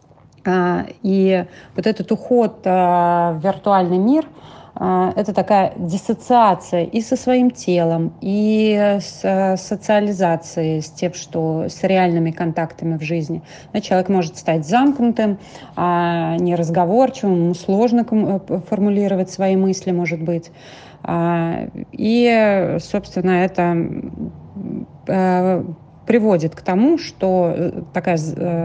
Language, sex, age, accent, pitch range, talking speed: Russian, female, 30-49, native, 165-195 Hz, 95 wpm